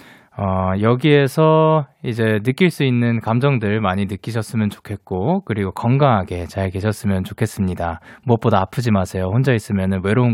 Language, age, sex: Korean, 20-39, male